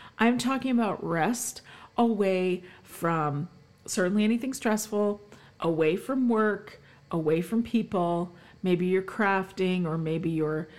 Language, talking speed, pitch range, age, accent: English, 115 wpm, 165-210 Hz, 40-59, American